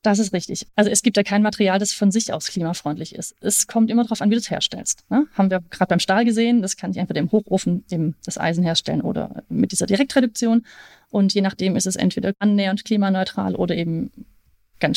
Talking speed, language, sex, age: 220 wpm, German, female, 30-49